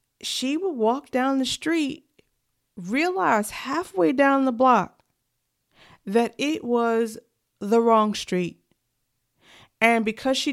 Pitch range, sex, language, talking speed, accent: 190-275 Hz, female, English, 115 wpm, American